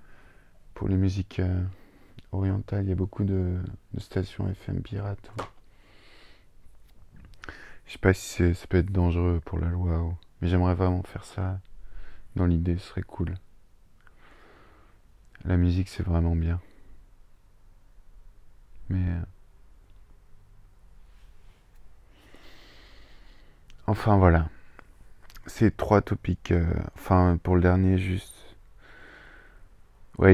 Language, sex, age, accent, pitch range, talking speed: French, male, 20-39, French, 85-95 Hz, 110 wpm